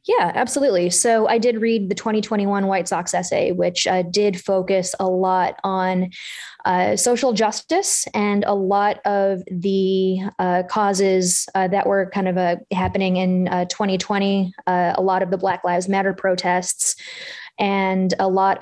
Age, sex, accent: 20-39, female, American